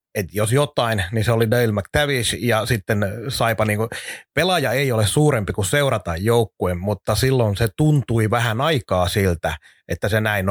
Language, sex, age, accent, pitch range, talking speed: Finnish, male, 30-49, native, 110-135 Hz, 165 wpm